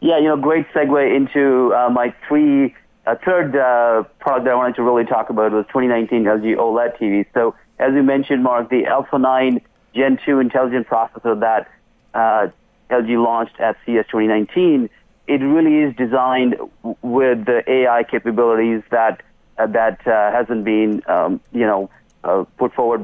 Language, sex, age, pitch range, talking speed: English, male, 30-49, 115-140 Hz, 170 wpm